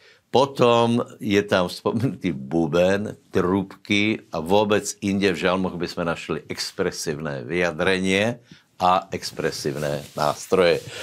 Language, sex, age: Slovak, male, 60-79